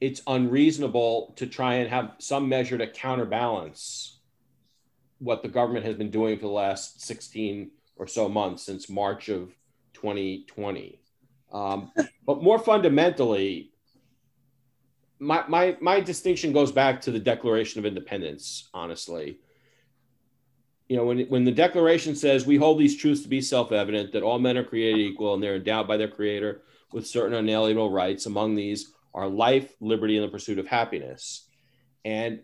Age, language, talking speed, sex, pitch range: 40-59, English, 155 wpm, male, 115-140 Hz